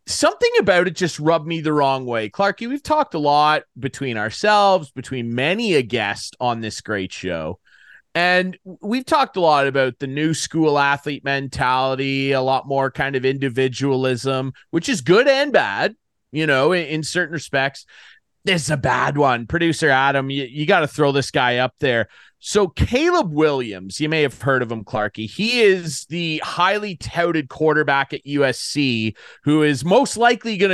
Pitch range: 130-190 Hz